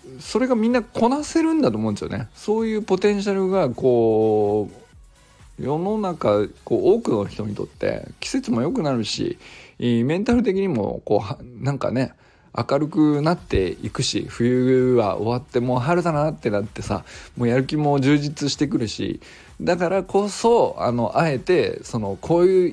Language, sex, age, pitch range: Japanese, male, 20-39, 120-190 Hz